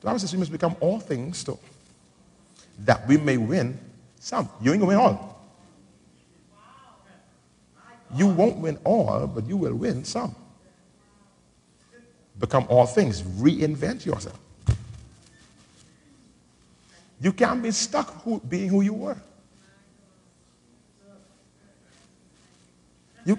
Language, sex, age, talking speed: English, male, 50-69, 115 wpm